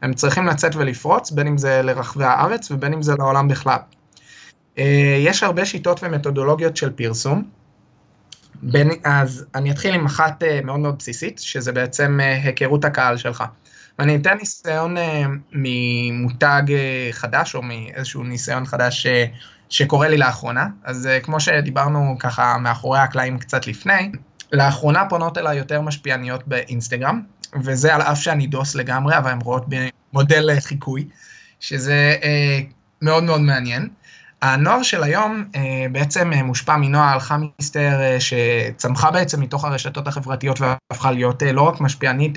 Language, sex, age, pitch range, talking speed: Hebrew, male, 20-39, 125-155 Hz, 135 wpm